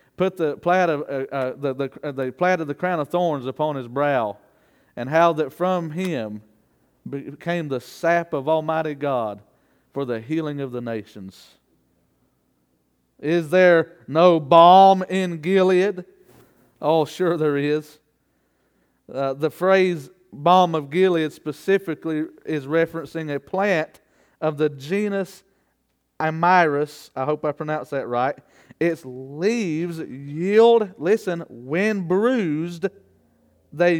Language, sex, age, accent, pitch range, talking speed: English, male, 40-59, American, 145-190 Hz, 130 wpm